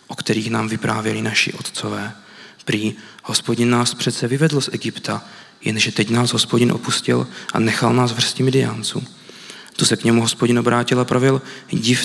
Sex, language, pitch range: male, Czech, 110-130 Hz